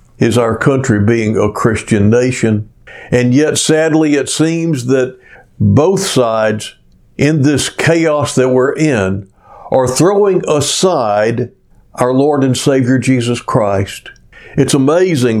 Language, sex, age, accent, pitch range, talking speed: English, male, 60-79, American, 120-150 Hz, 125 wpm